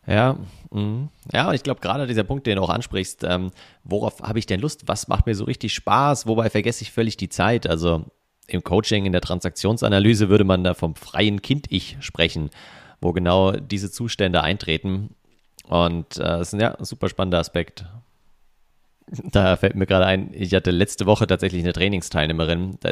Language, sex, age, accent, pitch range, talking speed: German, male, 30-49, German, 85-110 Hz, 185 wpm